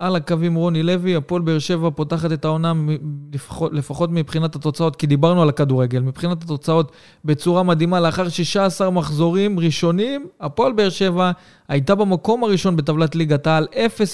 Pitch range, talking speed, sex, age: 150-185 Hz, 155 wpm, male, 20-39